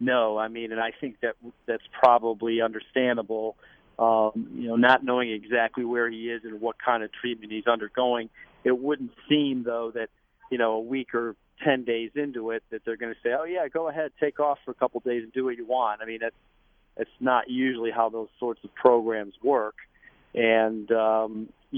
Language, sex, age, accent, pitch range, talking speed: English, male, 40-59, American, 115-125 Hz, 205 wpm